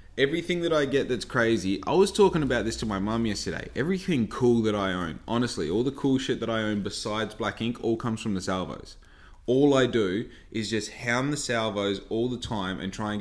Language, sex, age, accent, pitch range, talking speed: English, male, 20-39, Australian, 100-125 Hz, 225 wpm